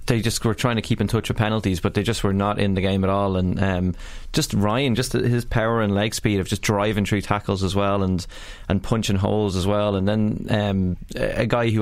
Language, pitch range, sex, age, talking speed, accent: English, 100-110 Hz, male, 20-39, 250 wpm, Irish